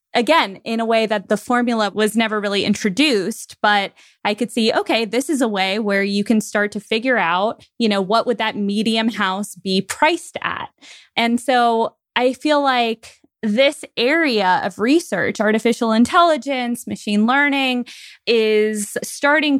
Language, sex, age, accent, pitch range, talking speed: English, female, 20-39, American, 215-275 Hz, 160 wpm